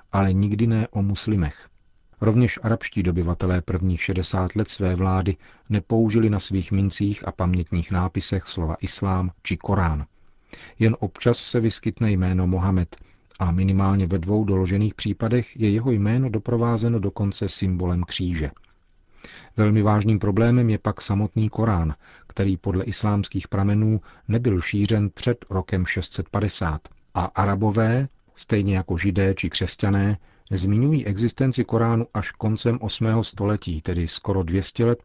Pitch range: 95-110 Hz